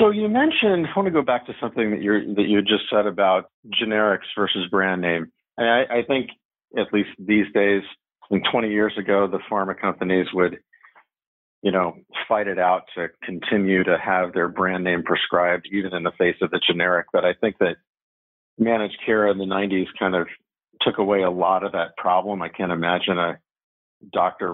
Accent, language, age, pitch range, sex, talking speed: American, English, 40-59, 95-105 Hz, male, 200 wpm